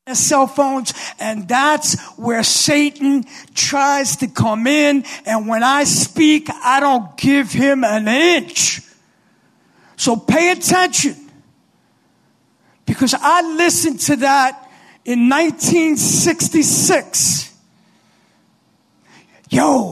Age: 40-59